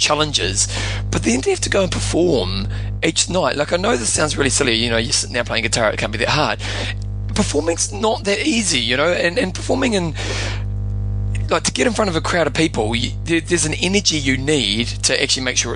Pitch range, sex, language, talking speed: 100-135 Hz, male, English, 230 wpm